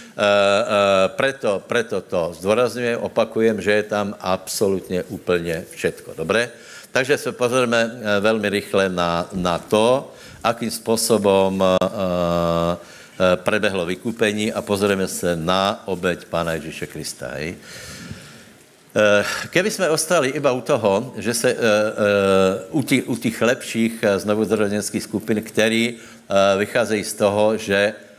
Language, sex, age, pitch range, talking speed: Slovak, male, 60-79, 95-110 Hz, 130 wpm